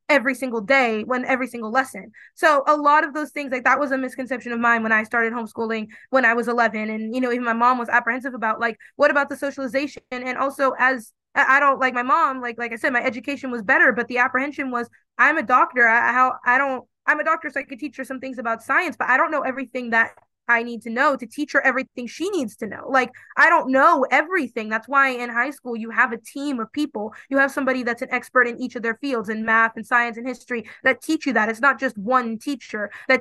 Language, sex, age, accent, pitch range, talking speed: English, female, 20-39, American, 235-275 Hz, 255 wpm